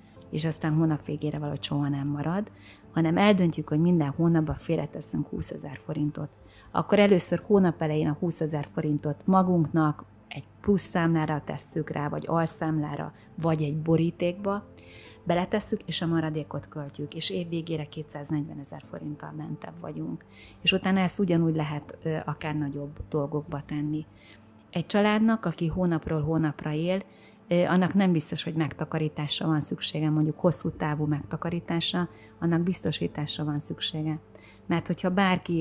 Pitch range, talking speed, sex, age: 145-170 Hz, 140 wpm, female, 30-49